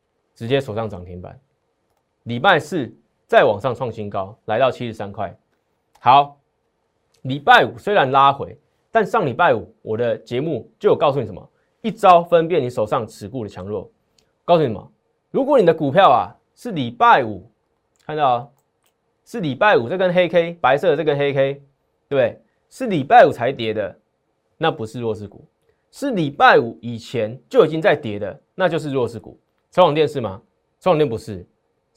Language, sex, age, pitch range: Chinese, male, 20-39, 105-160 Hz